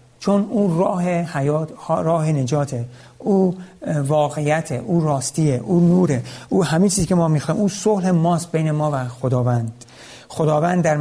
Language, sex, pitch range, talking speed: Persian, male, 125-160 Hz, 140 wpm